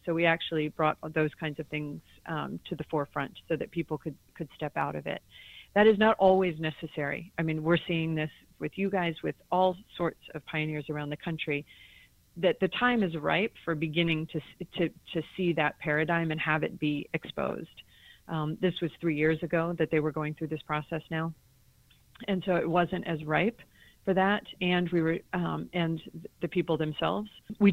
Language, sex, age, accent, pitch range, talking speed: English, female, 40-59, American, 155-175 Hz, 195 wpm